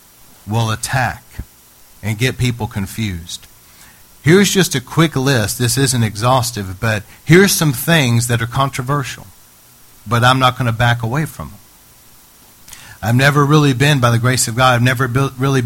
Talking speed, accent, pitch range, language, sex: 160 wpm, American, 100-140 Hz, English, male